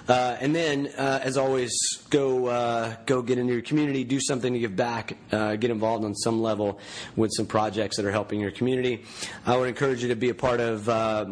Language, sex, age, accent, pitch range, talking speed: English, male, 30-49, American, 110-125 Hz, 225 wpm